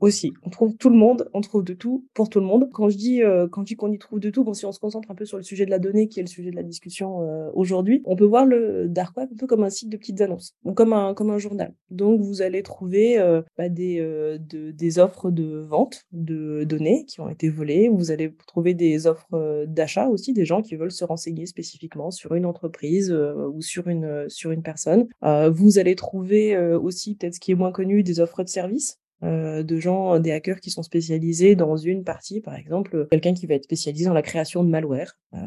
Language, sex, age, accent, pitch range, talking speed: French, female, 20-39, French, 160-200 Hz, 250 wpm